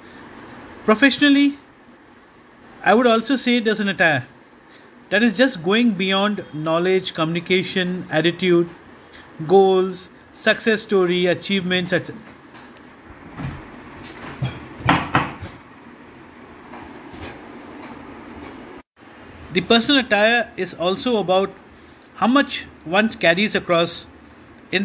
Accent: Indian